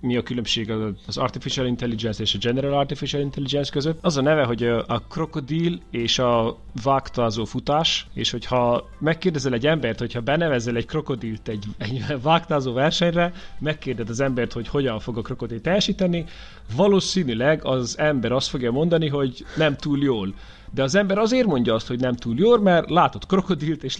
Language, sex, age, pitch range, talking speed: Hungarian, male, 30-49, 120-160 Hz, 170 wpm